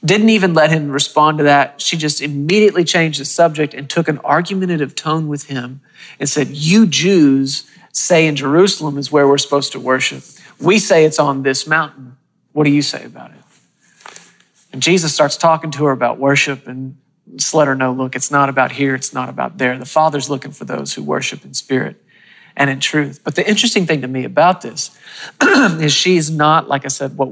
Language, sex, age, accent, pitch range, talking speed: English, male, 40-59, American, 135-160 Hz, 205 wpm